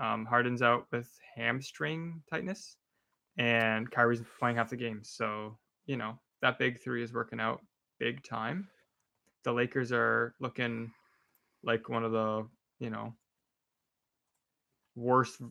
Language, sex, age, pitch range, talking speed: English, male, 10-29, 115-135 Hz, 130 wpm